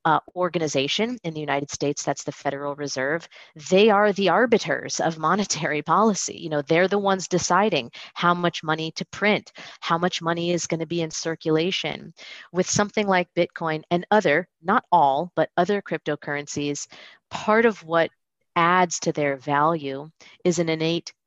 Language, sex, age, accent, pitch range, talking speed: English, female, 30-49, American, 150-180 Hz, 165 wpm